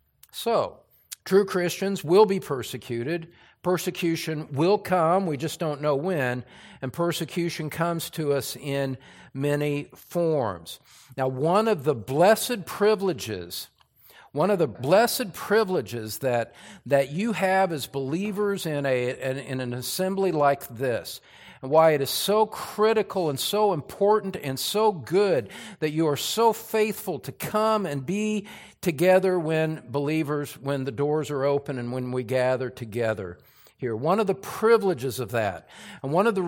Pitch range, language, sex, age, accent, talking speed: 145-210 Hz, English, male, 50-69, American, 150 wpm